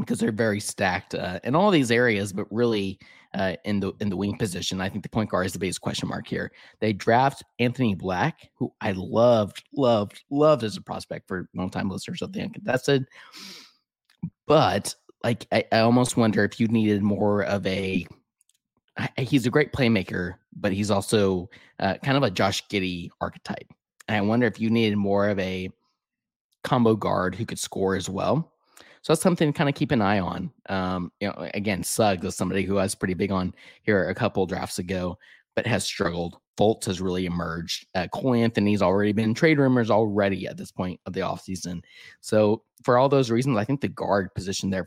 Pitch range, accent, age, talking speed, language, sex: 95-125 Hz, American, 20-39, 200 wpm, English, male